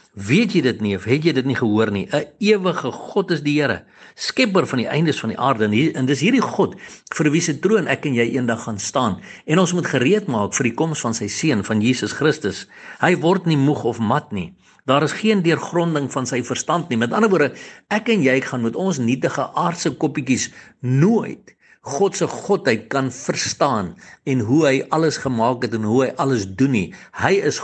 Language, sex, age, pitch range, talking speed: English, male, 60-79, 125-180 Hz, 215 wpm